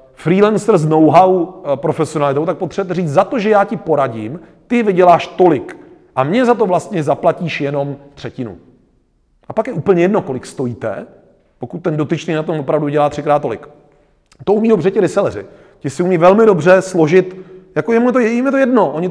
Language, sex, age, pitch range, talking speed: Czech, male, 30-49, 150-195 Hz, 180 wpm